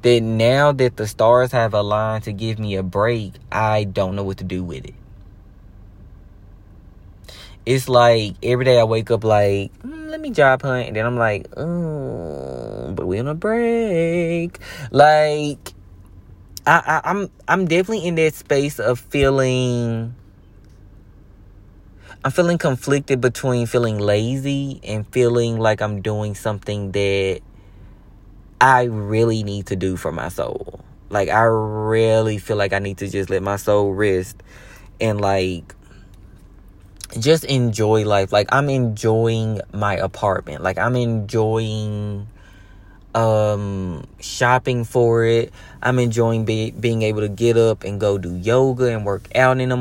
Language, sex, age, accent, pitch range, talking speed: English, male, 20-39, American, 100-125 Hz, 145 wpm